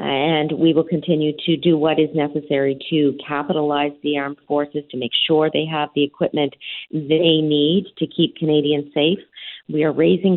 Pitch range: 140-165 Hz